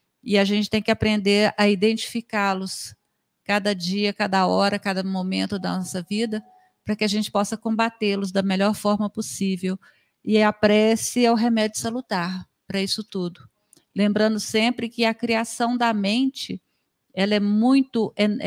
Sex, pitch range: female, 205-235 Hz